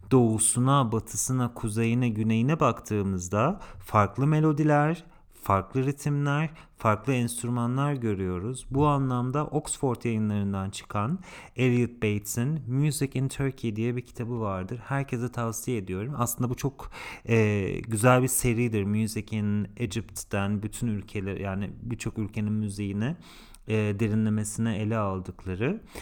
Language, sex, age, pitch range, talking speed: English, male, 40-59, 105-130 Hz, 115 wpm